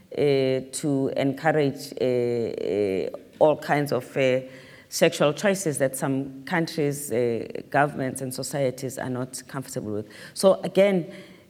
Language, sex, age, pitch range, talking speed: English, female, 30-49, 130-165 Hz, 125 wpm